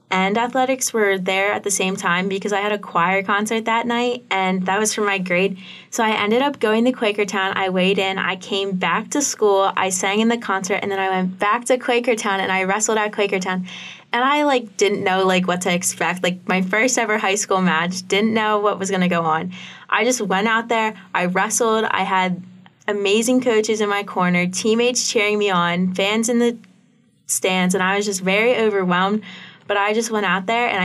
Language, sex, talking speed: English, female, 220 wpm